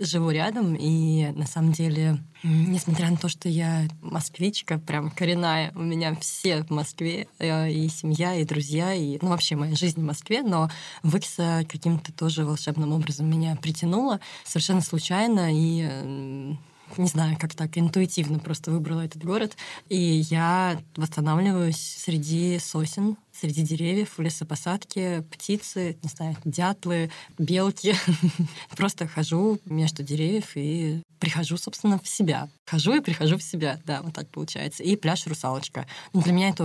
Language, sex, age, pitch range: Russian, female, 20-39, 155-175 Hz